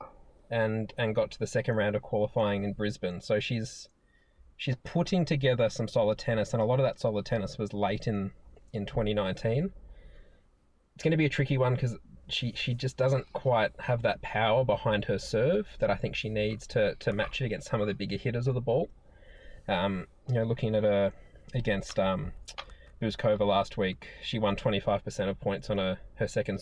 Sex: male